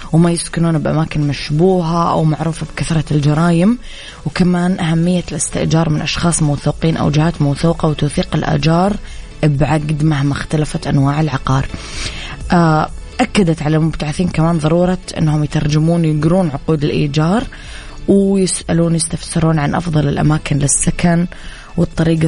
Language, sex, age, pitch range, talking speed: English, female, 20-39, 145-170 Hz, 110 wpm